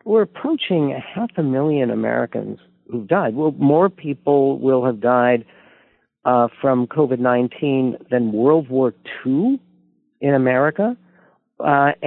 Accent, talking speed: American, 120 wpm